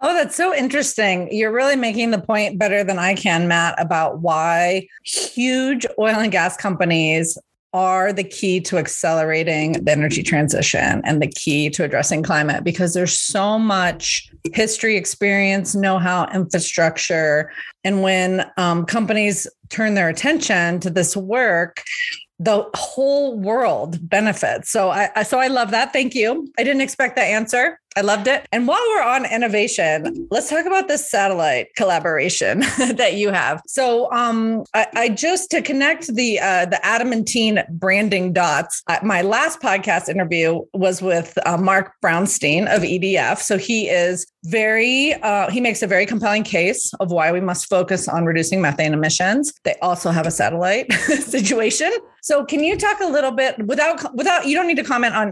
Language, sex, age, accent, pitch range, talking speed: English, female, 30-49, American, 180-250 Hz, 165 wpm